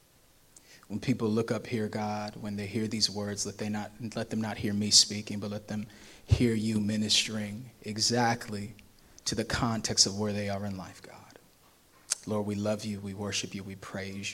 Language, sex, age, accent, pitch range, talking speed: English, male, 30-49, American, 105-125 Hz, 195 wpm